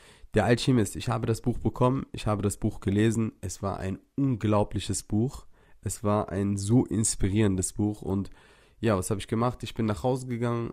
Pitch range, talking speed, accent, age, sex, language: 100-120 Hz, 190 wpm, German, 30-49, male, German